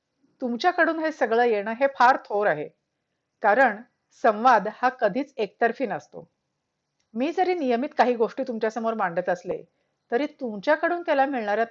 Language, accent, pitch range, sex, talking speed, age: Marathi, native, 205-265 Hz, female, 135 wpm, 50-69